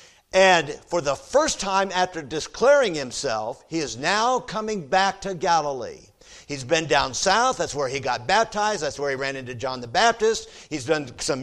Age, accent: 50-69, American